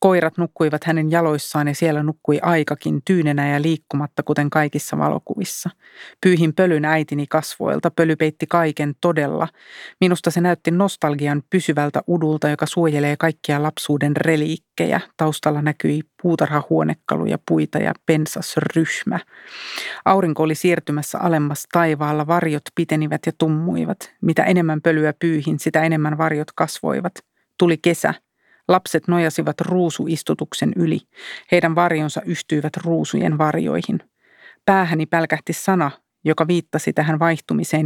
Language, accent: Finnish, native